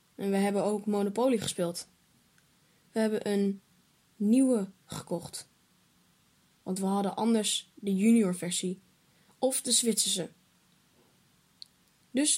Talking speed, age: 105 wpm, 10-29